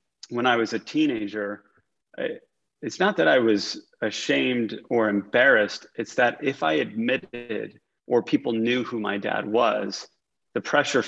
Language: English